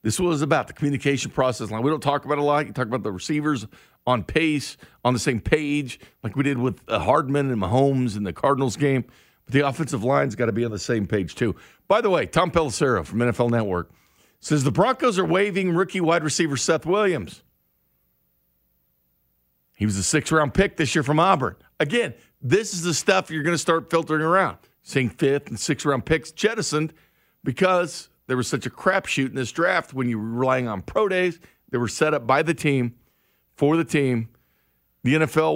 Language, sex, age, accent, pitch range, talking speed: English, male, 50-69, American, 115-160 Hz, 205 wpm